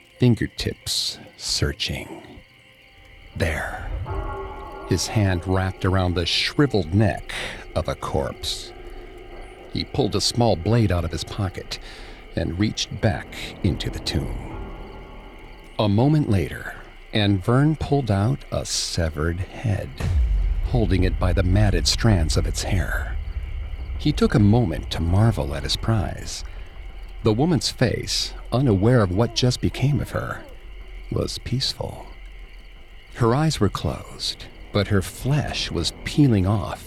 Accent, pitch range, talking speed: American, 85-110 Hz, 125 wpm